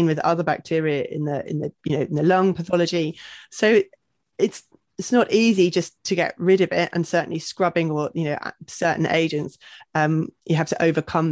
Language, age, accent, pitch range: English, 20-39, British, 155-180 Hz